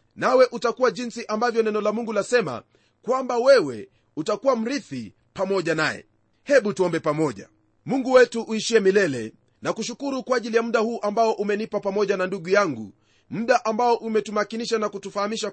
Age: 40-59